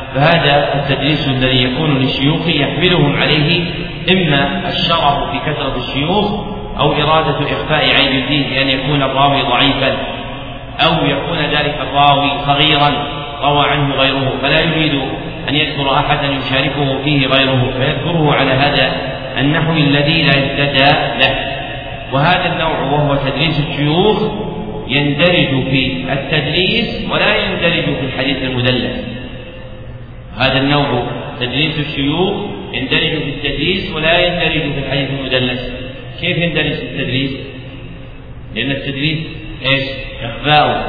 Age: 40-59